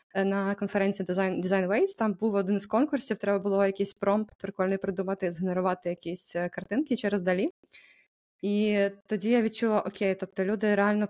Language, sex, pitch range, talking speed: Ukrainian, female, 185-210 Hz, 155 wpm